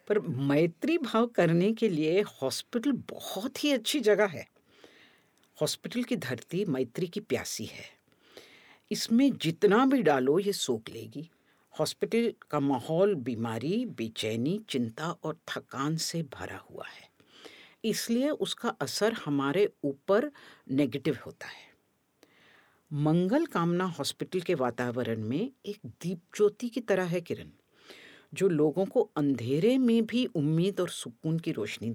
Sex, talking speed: female, 130 wpm